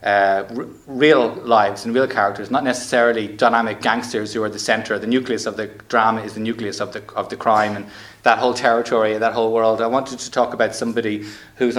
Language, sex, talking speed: English, male, 205 wpm